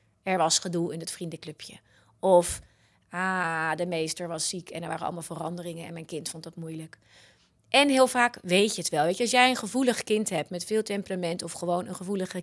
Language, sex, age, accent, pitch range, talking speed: Dutch, female, 30-49, Dutch, 170-200 Hz, 215 wpm